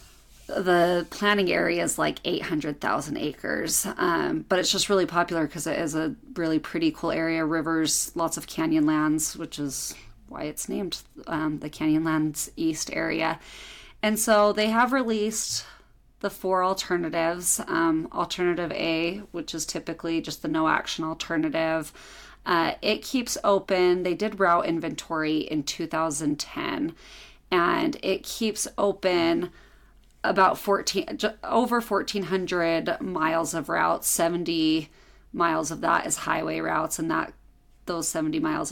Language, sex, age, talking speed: English, female, 30-49, 140 wpm